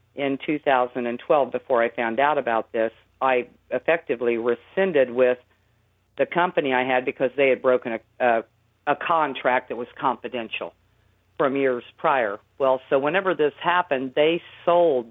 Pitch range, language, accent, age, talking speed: 120-155 Hz, English, American, 50-69, 145 wpm